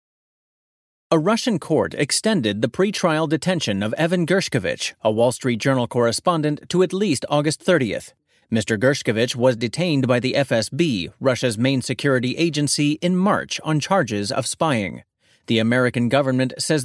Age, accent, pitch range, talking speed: 30-49, American, 120-165 Hz, 145 wpm